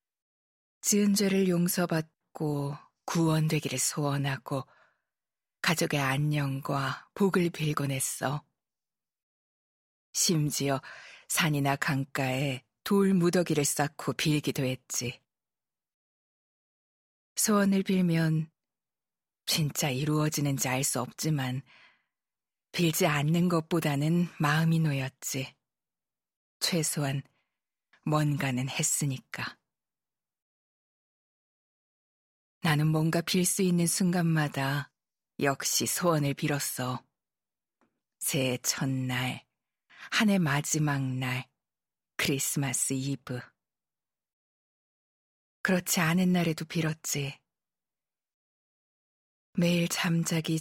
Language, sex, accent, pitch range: Korean, female, native, 135-165 Hz